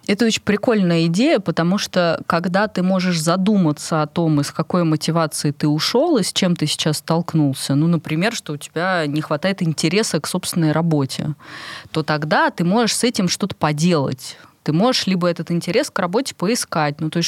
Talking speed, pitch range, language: 185 wpm, 150-195 Hz, Russian